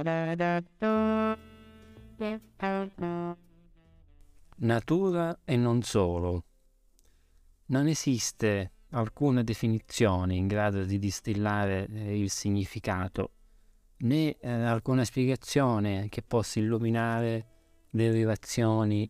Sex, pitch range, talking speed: male, 95-120 Hz, 65 wpm